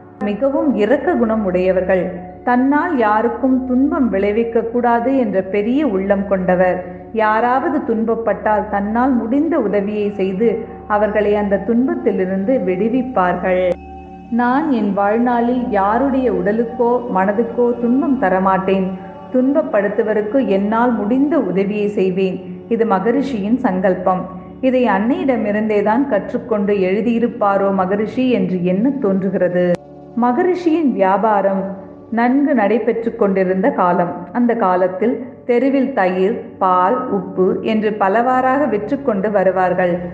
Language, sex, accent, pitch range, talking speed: Tamil, female, native, 190-245 Hz, 90 wpm